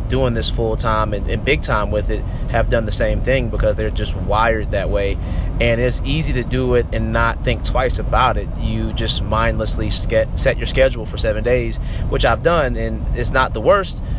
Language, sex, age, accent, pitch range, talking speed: English, male, 30-49, American, 105-120 Hz, 205 wpm